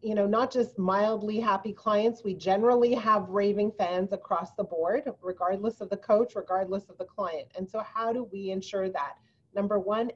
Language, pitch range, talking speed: English, 195-230 Hz, 190 wpm